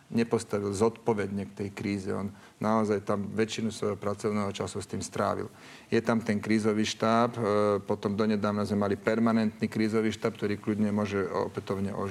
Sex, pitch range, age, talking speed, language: male, 105-120 Hz, 40-59, 155 wpm, Slovak